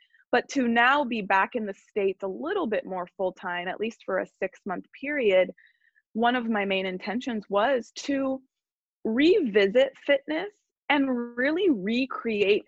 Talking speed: 155 wpm